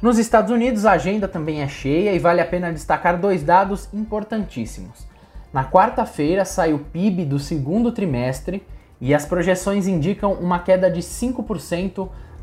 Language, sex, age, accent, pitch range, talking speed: Portuguese, male, 20-39, Brazilian, 145-190 Hz, 155 wpm